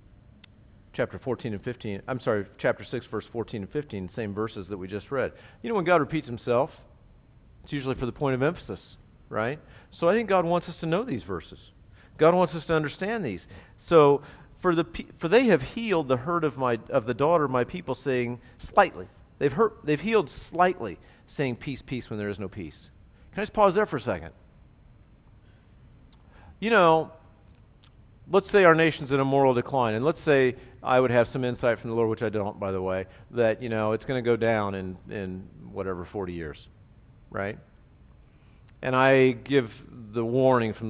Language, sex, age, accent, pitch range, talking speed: English, male, 40-59, American, 110-160 Hz, 200 wpm